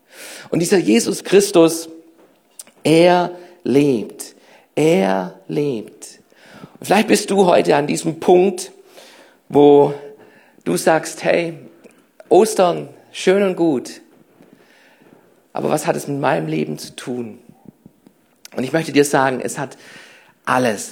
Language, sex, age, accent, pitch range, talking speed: German, male, 50-69, German, 115-155 Hz, 115 wpm